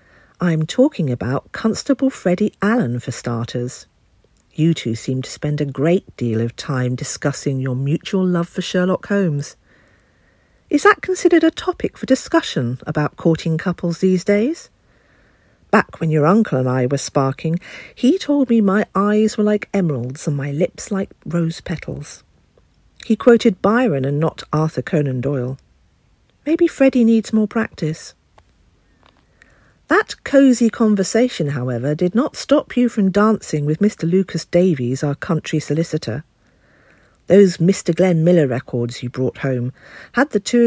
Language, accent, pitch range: English, British, 140-220 Hz